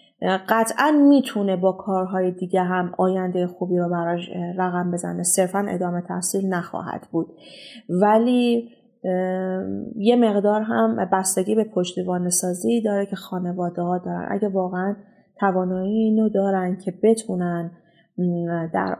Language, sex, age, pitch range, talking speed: Persian, female, 30-49, 180-220 Hz, 120 wpm